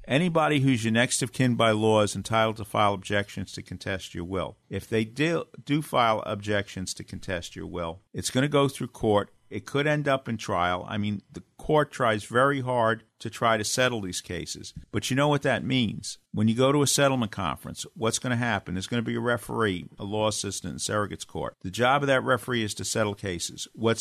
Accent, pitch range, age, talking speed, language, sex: American, 105-125 Hz, 50-69, 225 wpm, English, male